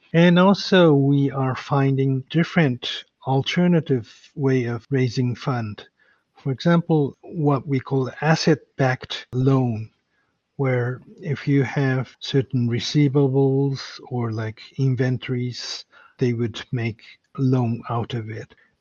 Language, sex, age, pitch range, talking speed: English, male, 50-69, 120-145 Hz, 110 wpm